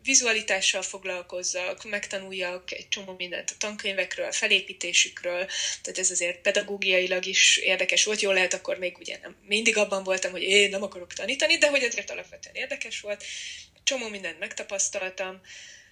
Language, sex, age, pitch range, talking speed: Hungarian, female, 20-39, 185-220 Hz, 150 wpm